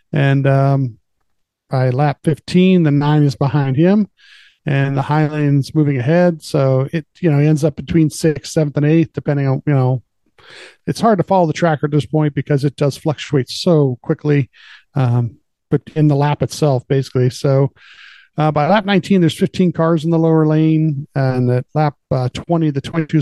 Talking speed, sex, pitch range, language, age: 185 wpm, male, 135-155 Hz, English, 40-59